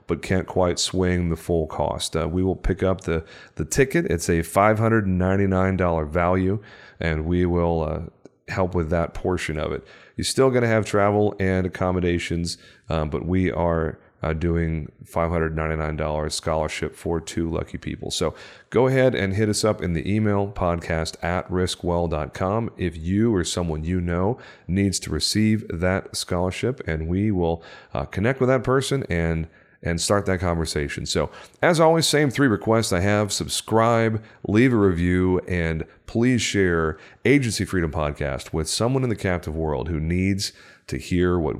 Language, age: English, 40-59